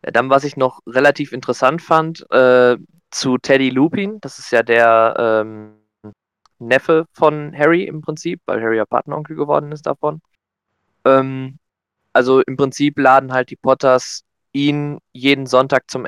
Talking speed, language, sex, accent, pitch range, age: 155 wpm, German, male, German, 115-150 Hz, 20-39